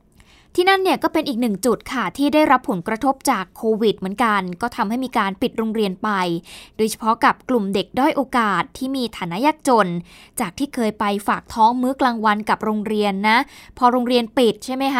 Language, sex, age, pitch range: Thai, female, 20-39, 210-265 Hz